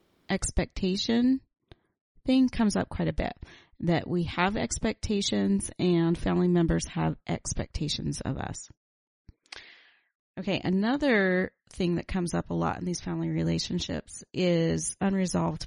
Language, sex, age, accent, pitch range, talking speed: English, female, 30-49, American, 150-195 Hz, 125 wpm